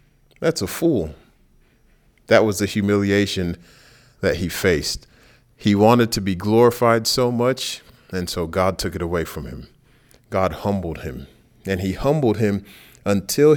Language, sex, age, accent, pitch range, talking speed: English, male, 40-59, American, 90-115 Hz, 145 wpm